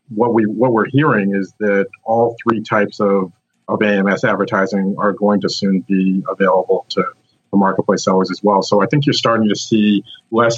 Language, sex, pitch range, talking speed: English, male, 100-115 Hz, 195 wpm